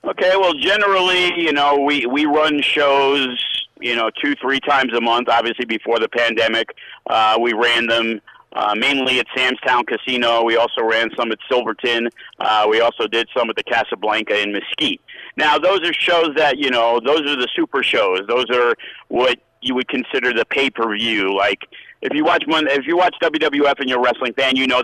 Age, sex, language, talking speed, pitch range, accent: 50-69, male, English, 195 wpm, 115-145 Hz, American